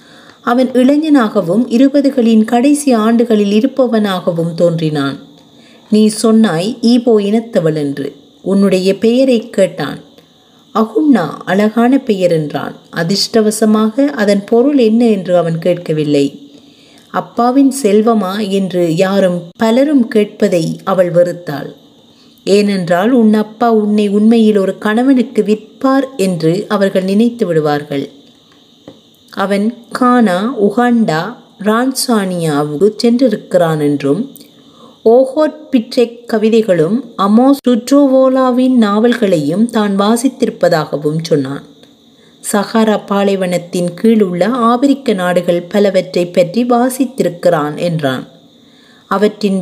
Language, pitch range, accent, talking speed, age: Tamil, 185-245 Hz, native, 85 wpm, 30-49